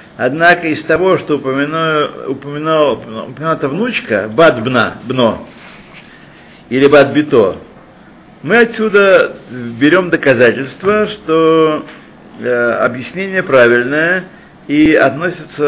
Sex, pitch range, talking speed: male, 125-175 Hz, 75 wpm